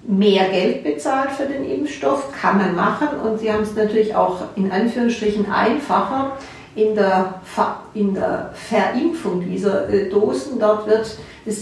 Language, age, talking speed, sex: German, 50-69, 155 wpm, female